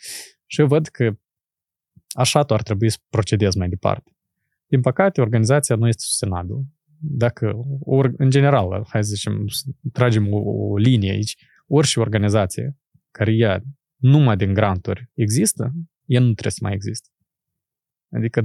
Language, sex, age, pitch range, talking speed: Romanian, male, 20-39, 105-135 Hz, 140 wpm